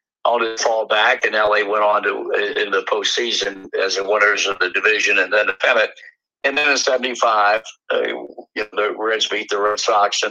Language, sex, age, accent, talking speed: English, male, 60-79, American, 205 wpm